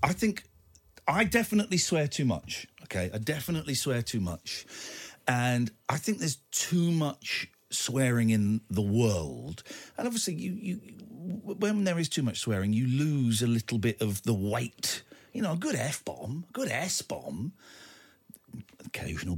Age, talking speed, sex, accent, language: 40-59, 155 wpm, male, British, English